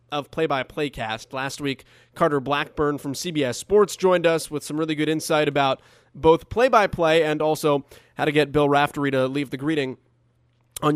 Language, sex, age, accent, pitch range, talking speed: English, male, 20-39, American, 130-170 Hz, 175 wpm